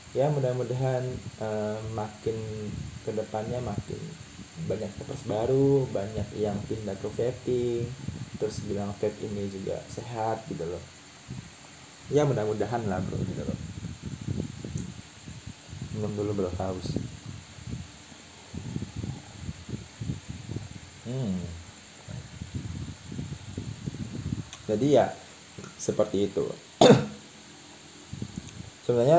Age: 20-39